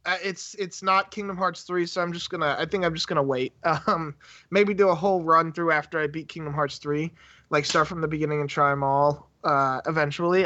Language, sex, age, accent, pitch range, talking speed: English, male, 20-39, American, 155-205 Hz, 230 wpm